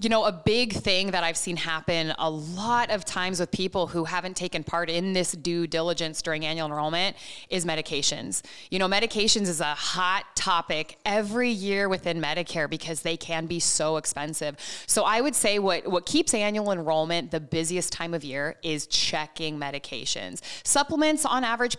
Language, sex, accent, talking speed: English, female, American, 180 wpm